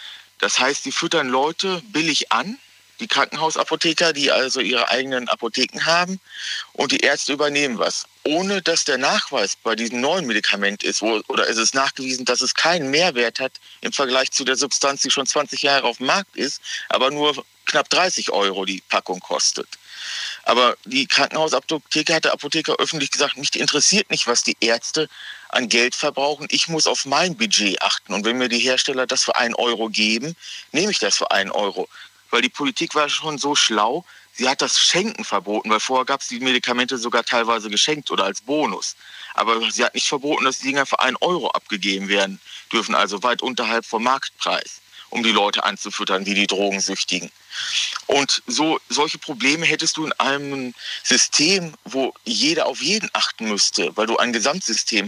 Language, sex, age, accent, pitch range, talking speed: German, male, 40-59, German, 115-150 Hz, 180 wpm